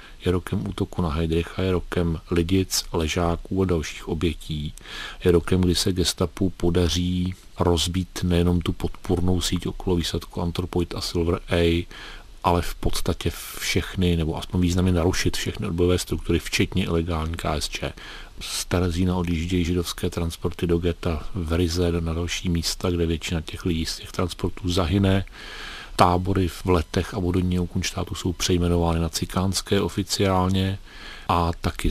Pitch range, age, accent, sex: 85-95 Hz, 40-59, native, male